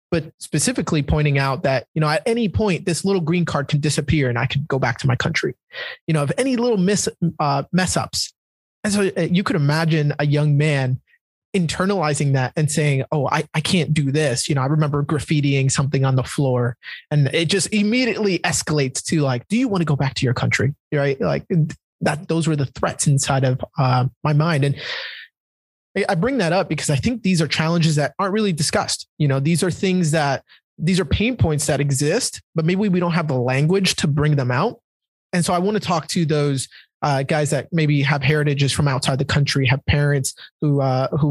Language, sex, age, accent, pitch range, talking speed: English, male, 20-39, American, 140-175 Hz, 215 wpm